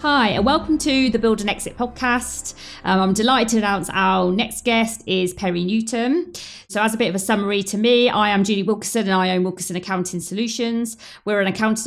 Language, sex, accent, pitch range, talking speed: English, female, British, 180-220 Hz, 210 wpm